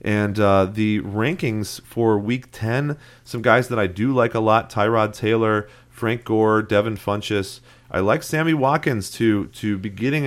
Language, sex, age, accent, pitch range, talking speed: English, male, 30-49, American, 100-125 Hz, 170 wpm